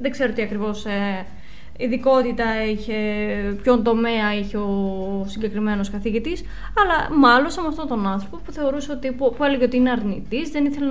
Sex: female